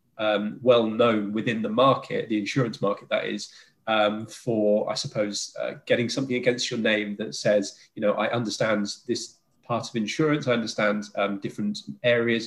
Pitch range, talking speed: 110-130 Hz, 175 wpm